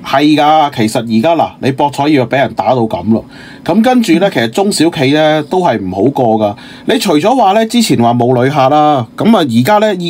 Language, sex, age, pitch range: Chinese, male, 30-49, 120-185 Hz